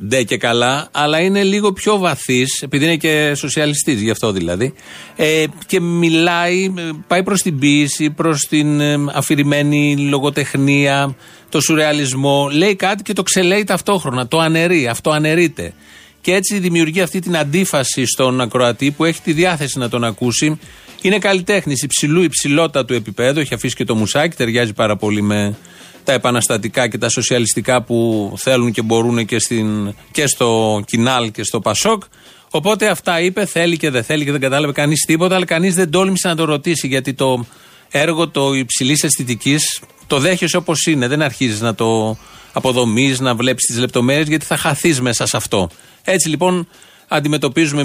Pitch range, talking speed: 125-165 Hz, 165 wpm